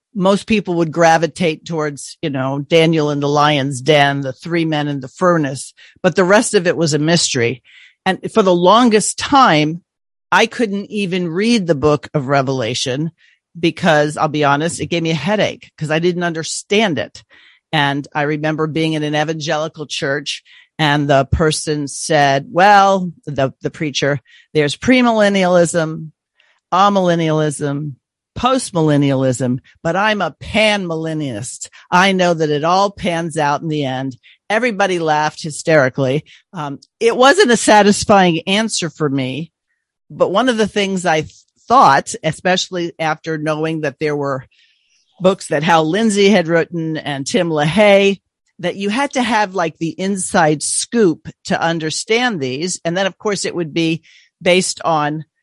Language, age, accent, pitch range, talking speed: English, 50-69, American, 150-190 Hz, 155 wpm